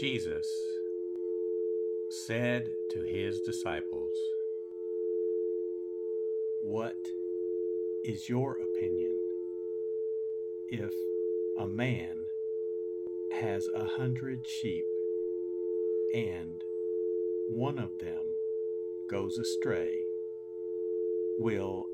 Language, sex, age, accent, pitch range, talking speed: English, male, 60-79, American, 90-115 Hz, 65 wpm